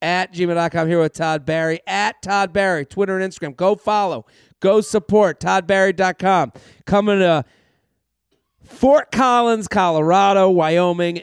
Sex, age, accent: male, 40-59, American